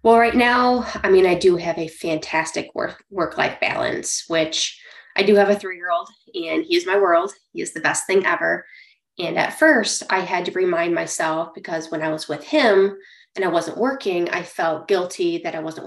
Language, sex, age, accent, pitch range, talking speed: English, female, 20-39, American, 165-240 Hz, 210 wpm